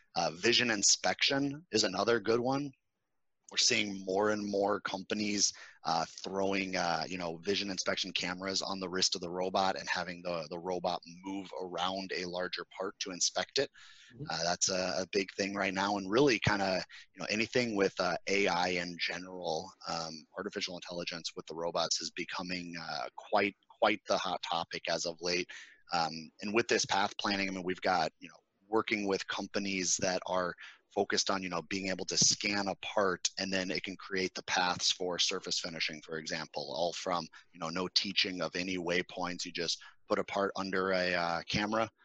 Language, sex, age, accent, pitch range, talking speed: English, male, 30-49, American, 90-100 Hz, 190 wpm